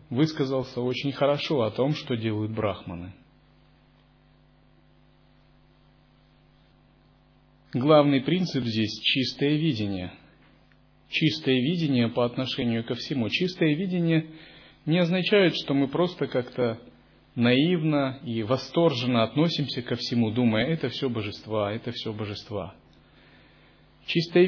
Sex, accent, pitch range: male, native, 120-155 Hz